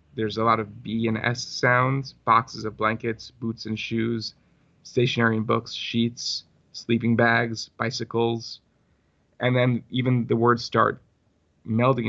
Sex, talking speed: male, 140 wpm